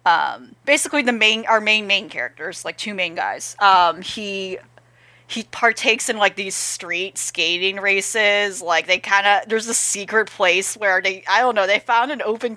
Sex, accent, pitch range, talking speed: female, American, 195-245 Hz, 185 wpm